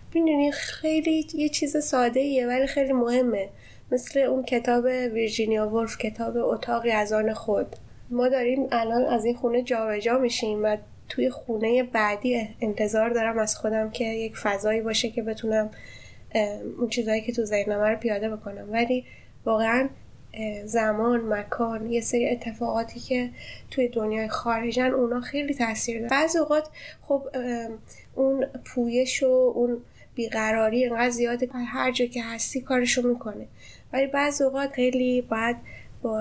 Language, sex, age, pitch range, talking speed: Persian, female, 10-29, 220-250 Hz, 135 wpm